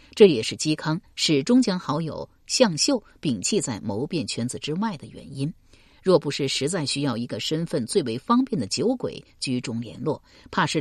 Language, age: Chinese, 50-69